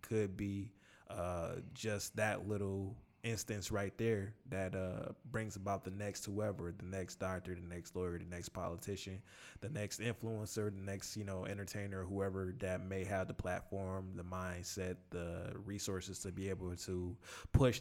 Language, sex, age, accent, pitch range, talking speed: English, male, 20-39, American, 95-105 Hz, 160 wpm